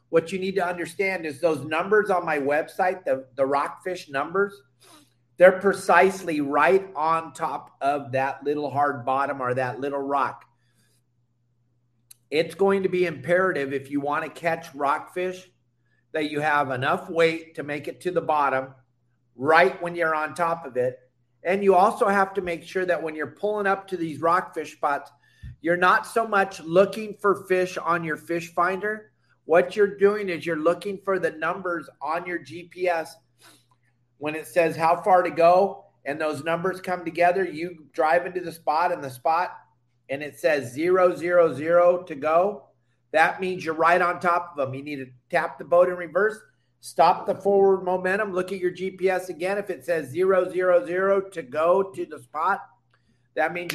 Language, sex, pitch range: English, male, 140-185 Hz